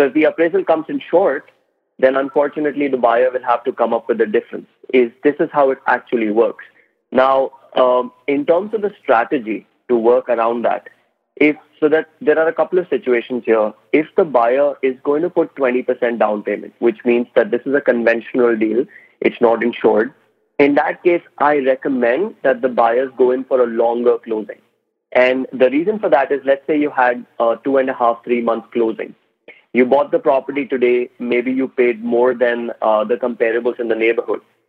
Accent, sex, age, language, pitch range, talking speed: Indian, male, 30-49, English, 120-140 Hz, 200 wpm